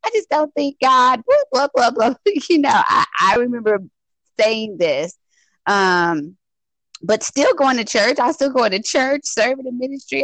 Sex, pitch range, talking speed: female, 170-250 Hz, 175 wpm